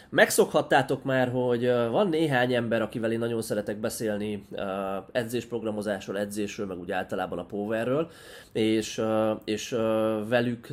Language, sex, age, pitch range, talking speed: Hungarian, male, 20-39, 100-120 Hz, 115 wpm